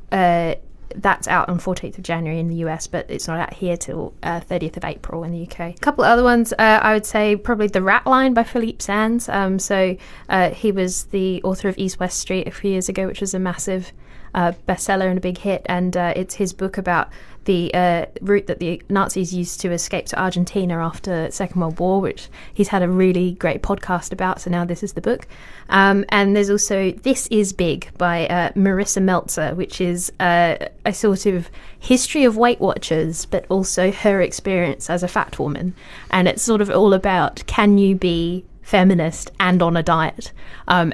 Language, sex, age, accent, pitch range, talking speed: English, female, 20-39, British, 170-195 Hz, 210 wpm